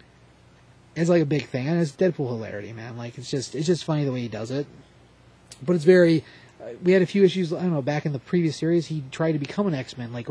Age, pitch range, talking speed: 30-49, 130-180 Hz, 260 wpm